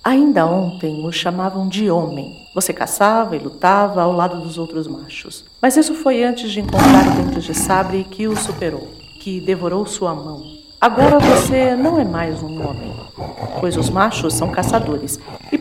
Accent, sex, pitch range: Brazilian, female, 160-220 Hz